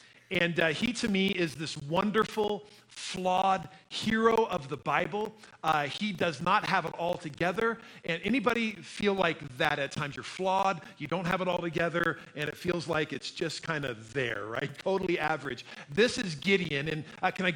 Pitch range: 150-195 Hz